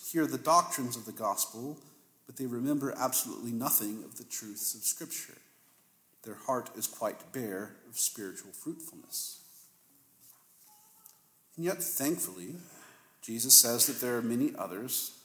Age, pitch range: 40-59, 110-130 Hz